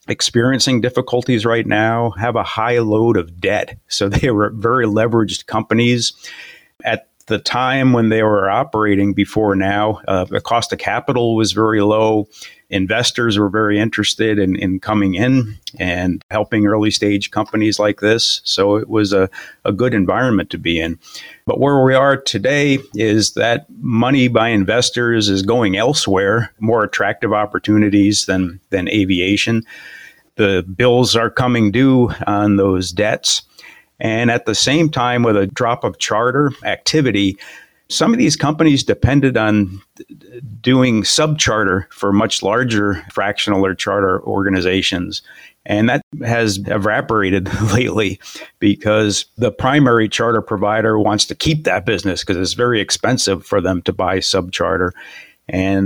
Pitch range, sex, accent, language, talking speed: 100-120 Hz, male, American, English, 145 wpm